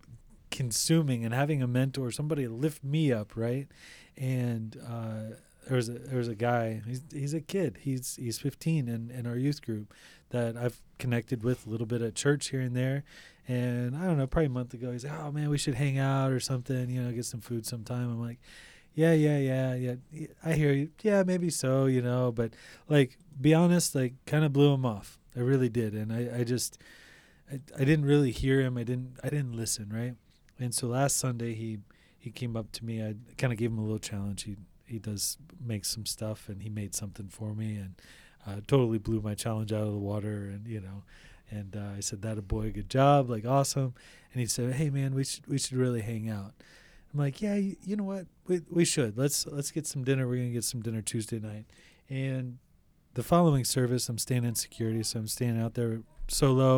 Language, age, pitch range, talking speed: English, 20-39, 115-140 Hz, 225 wpm